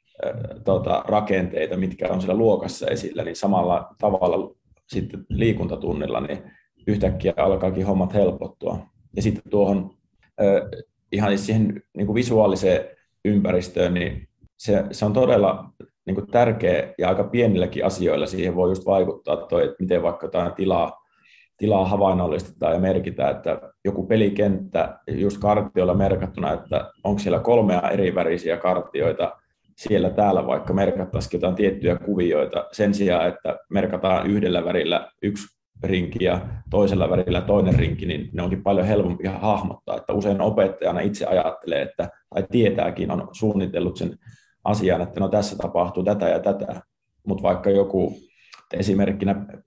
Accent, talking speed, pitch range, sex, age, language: native, 130 wpm, 95-105 Hz, male, 30-49, Finnish